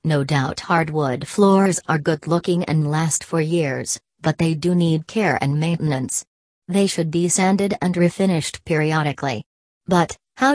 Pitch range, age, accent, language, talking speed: 150-180 Hz, 40-59, American, English, 155 wpm